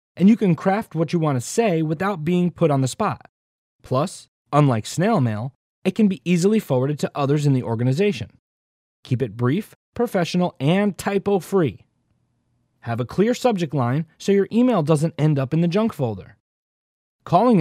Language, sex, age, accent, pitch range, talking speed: English, male, 30-49, American, 125-190 Hz, 175 wpm